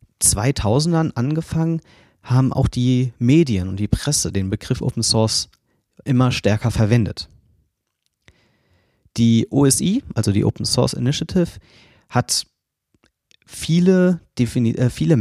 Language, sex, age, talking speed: German, male, 30-49, 105 wpm